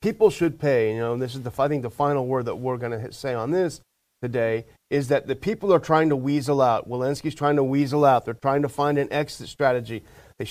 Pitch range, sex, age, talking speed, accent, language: 120-150 Hz, male, 40-59, 250 wpm, American, English